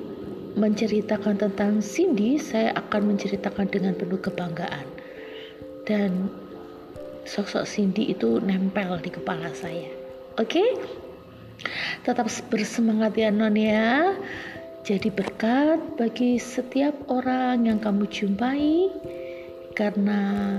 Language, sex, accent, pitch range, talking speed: Indonesian, female, native, 190-250 Hz, 95 wpm